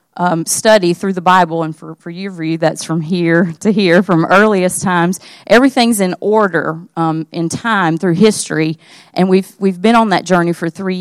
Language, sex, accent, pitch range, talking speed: English, female, American, 165-200 Hz, 185 wpm